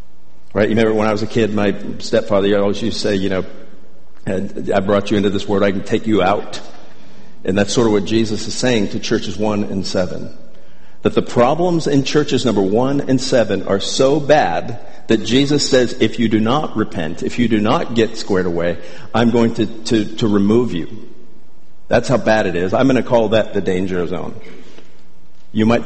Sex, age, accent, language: male, 50-69, American, English